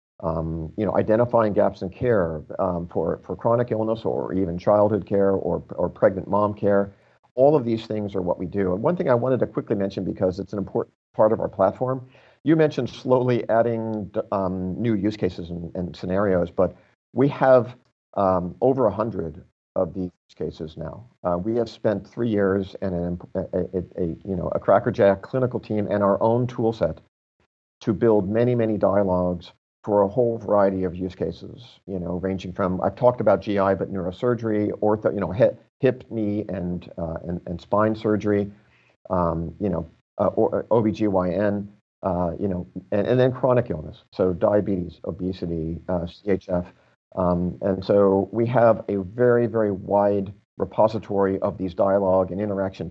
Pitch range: 90-110 Hz